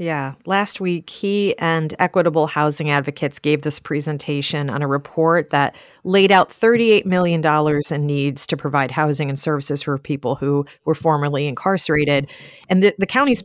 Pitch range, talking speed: 145-185 Hz, 160 wpm